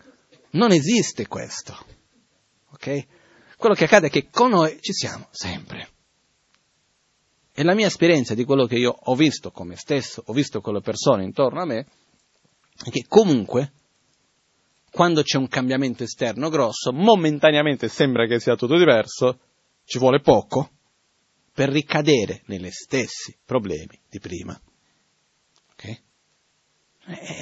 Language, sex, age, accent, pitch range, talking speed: Italian, male, 40-59, native, 120-170 Hz, 135 wpm